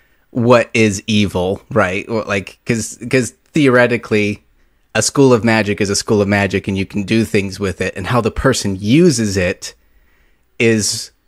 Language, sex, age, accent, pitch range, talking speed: English, male, 30-49, American, 100-130 Hz, 165 wpm